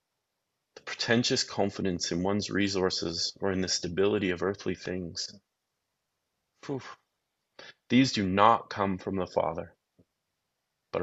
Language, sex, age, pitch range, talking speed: English, male, 30-49, 95-125 Hz, 110 wpm